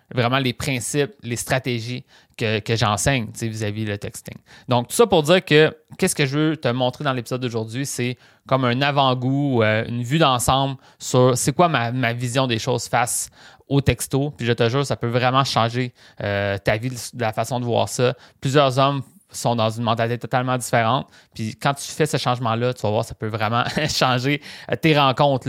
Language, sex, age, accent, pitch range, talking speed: French, male, 30-49, Canadian, 115-145 Hz, 195 wpm